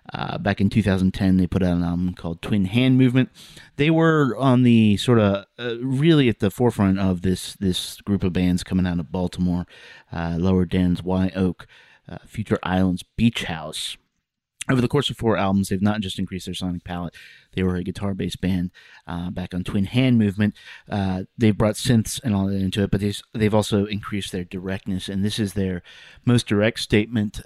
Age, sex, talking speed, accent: 30-49, male, 200 wpm, American